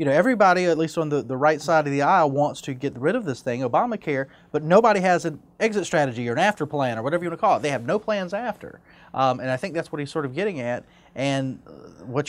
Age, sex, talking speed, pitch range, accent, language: 30-49, male, 275 wpm, 135-190 Hz, American, English